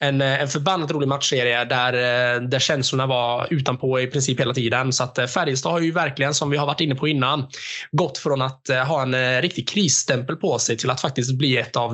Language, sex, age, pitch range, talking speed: Swedish, male, 20-39, 125-165 Hz, 210 wpm